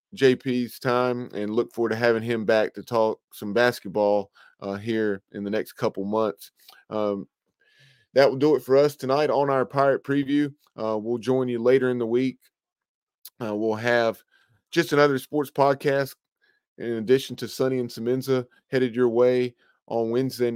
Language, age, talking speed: English, 20-39, 170 wpm